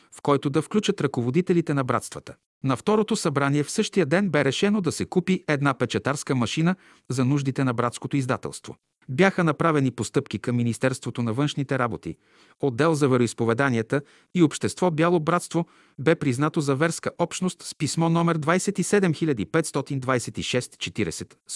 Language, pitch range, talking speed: Bulgarian, 120-165 Hz, 140 wpm